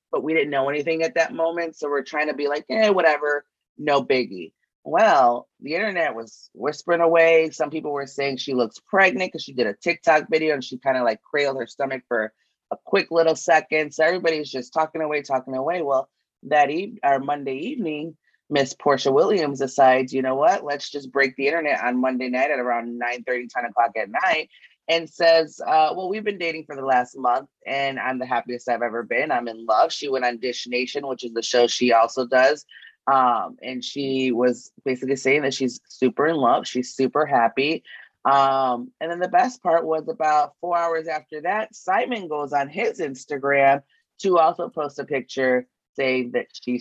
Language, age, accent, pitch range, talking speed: English, 20-39, American, 125-160 Hz, 205 wpm